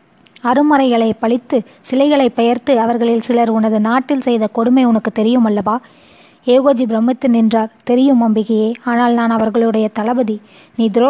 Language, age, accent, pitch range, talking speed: Tamil, 20-39, native, 225-255 Hz, 120 wpm